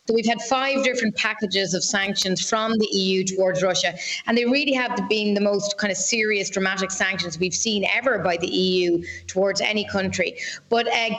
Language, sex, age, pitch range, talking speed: English, female, 30-49, 200-235 Hz, 195 wpm